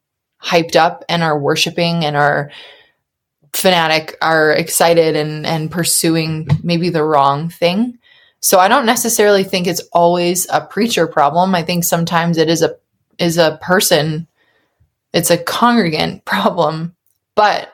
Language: English